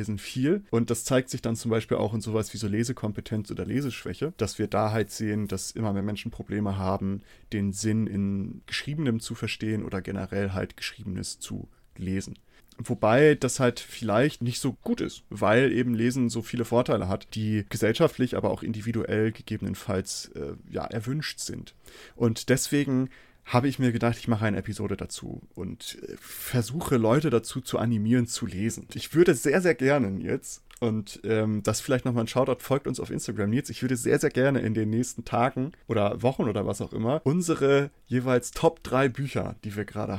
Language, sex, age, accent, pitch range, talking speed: German, male, 30-49, German, 110-130 Hz, 185 wpm